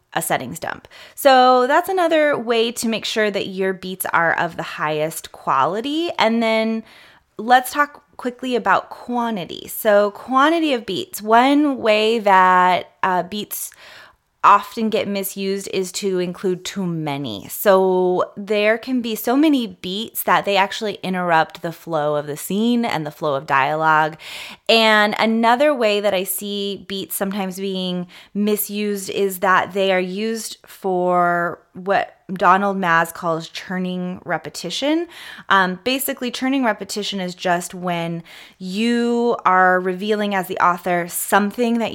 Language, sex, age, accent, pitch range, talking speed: English, female, 20-39, American, 180-225 Hz, 145 wpm